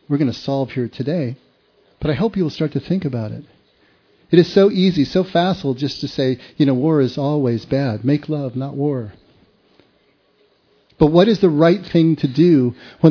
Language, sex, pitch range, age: English, male, 130-160 Hz, 40-59